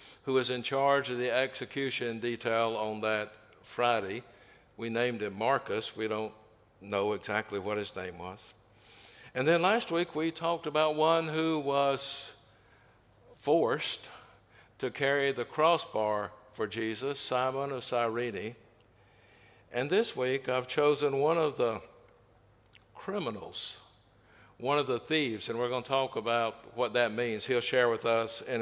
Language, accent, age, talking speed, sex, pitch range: English, American, 60-79, 145 wpm, male, 110-135 Hz